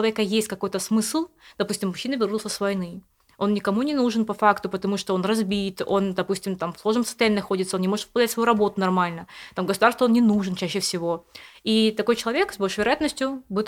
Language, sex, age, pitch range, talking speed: Russian, female, 20-39, 180-220 Hz, 200 wpm